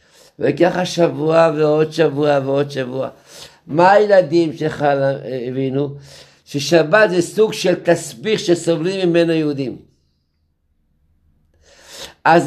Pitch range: 140-215 Hz